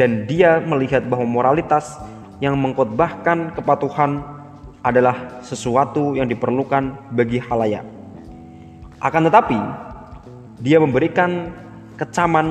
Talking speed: 90 wpm